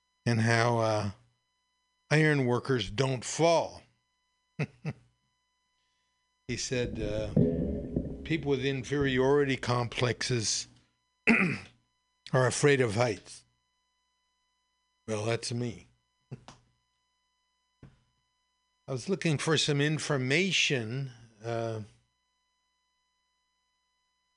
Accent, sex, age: American, male, 50-69